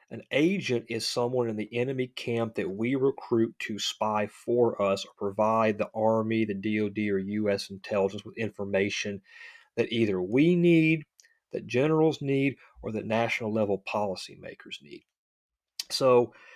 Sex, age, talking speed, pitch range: male, 40-59, 140 wpm, 105-130 Hz